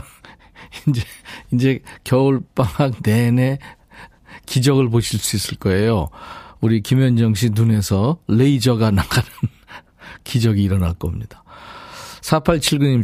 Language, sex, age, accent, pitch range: Korean, male, 40-59, native, 100-140 Hz